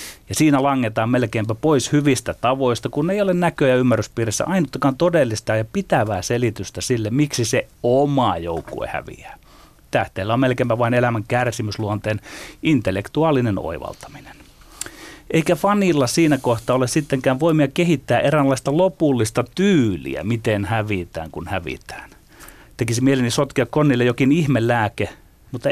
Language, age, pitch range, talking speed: Finnish, 30-49, 105-145 Hz, 130 wpm